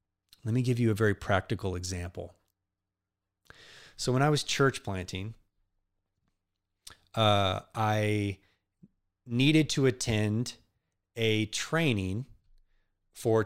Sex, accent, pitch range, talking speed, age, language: male, American, 100-130 Hz, 100 wpm, 30-49, English